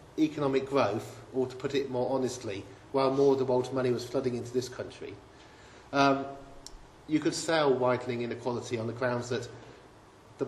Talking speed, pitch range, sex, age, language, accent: 170 wpm, 115-135 Hz, male, 40-59, English, British